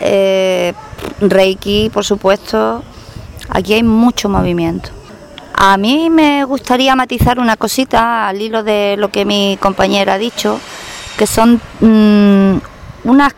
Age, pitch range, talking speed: 30-49, 195-240 Hz, 125 wpm